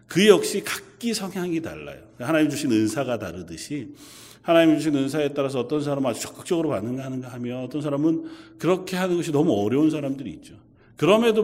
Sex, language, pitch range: male, Korean, 105-150 Hz